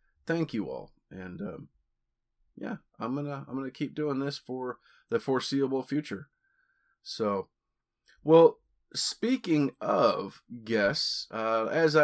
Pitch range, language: 110-135 Hz, English